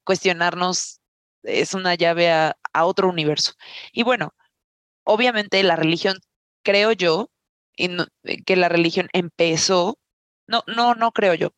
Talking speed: 125 wpm